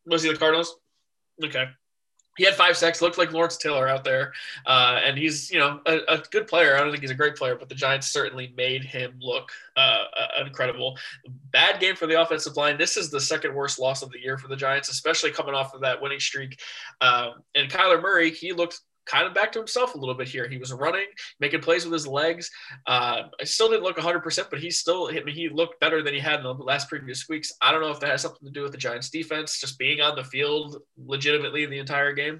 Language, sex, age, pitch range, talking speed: English, male, 20-39, 135-165 Hz, 250 wpm